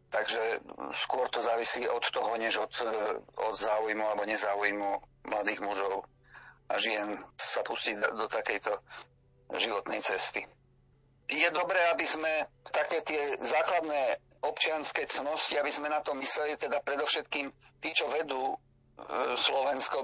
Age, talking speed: 50-69, 125 wpm